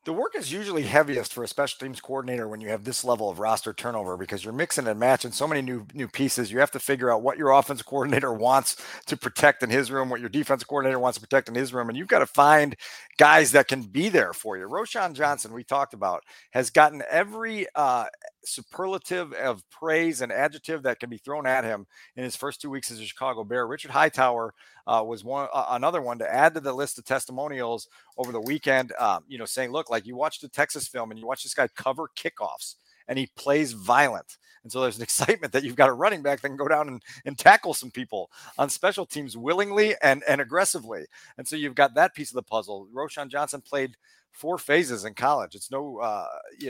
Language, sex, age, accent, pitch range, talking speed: English, male, 40-59, American, 120-150 Hz, 235 wpm